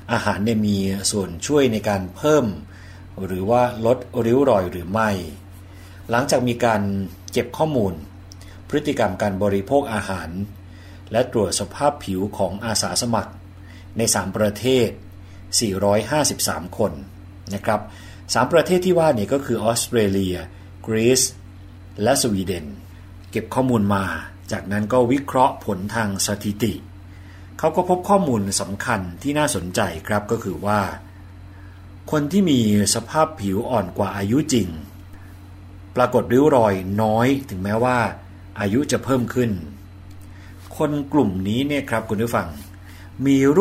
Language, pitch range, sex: Thai, 95-120 Hz, male